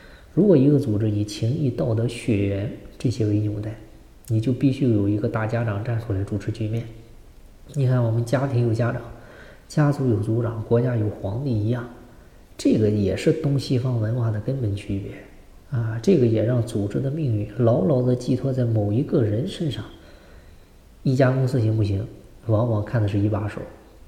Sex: male